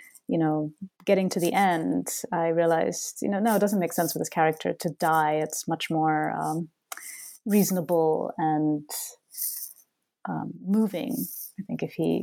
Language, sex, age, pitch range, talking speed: English, female, 30-49, 165-205 Hz, 155 wpm